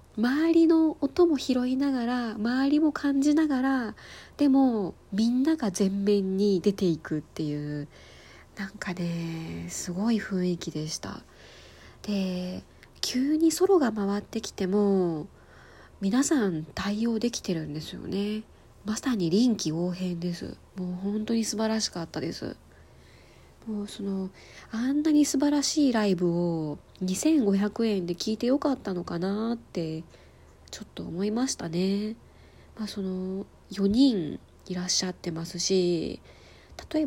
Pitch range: 175-235 Hz